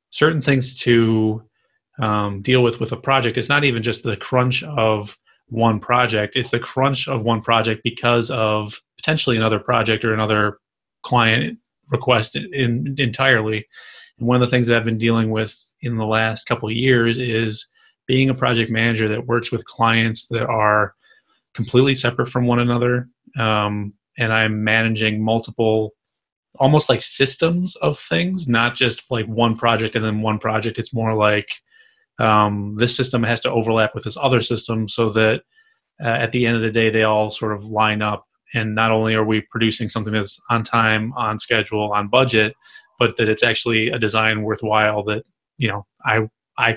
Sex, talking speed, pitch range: male, 180 wpm, 110-125 Hz